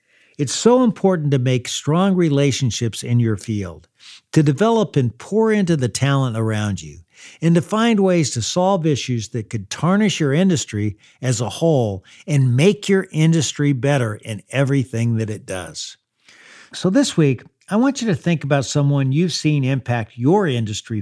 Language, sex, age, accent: English, male, 50-69, American